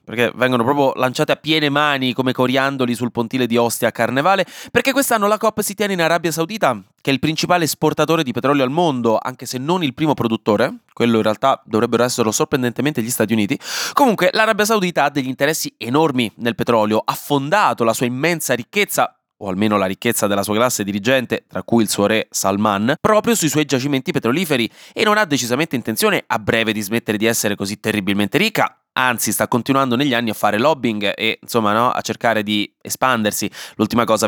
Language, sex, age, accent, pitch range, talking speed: Italian, male, 20-39, native, 110-145 Hz, 200 wpm